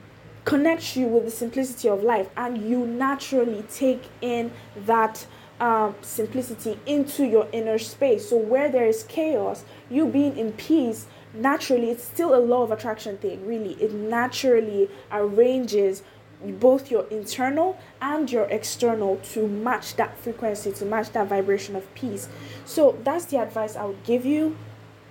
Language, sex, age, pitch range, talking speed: English, female, 20-39, 205-255 Hz, 155 wpm